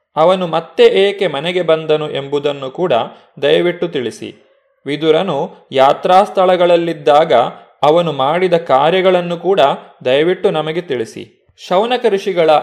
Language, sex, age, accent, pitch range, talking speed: Kannada, male, 20-39, native, 145-195 Hz, 90 wpm